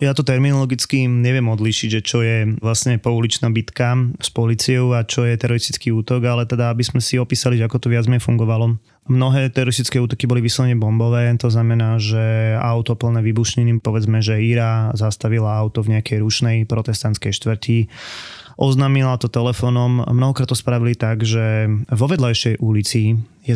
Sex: male